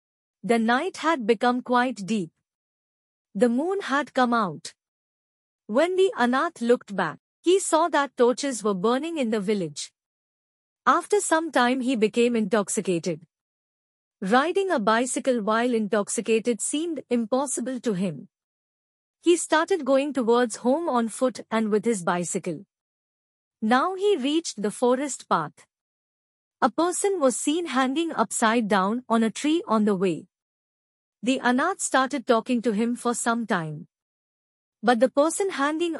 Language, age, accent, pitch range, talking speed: Hindi, 50-69, native, 210-280 Hz, 140 wpm